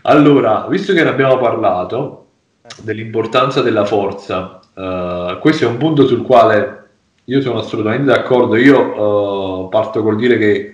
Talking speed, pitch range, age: 145 wpm, 105-130 Hz, 20-39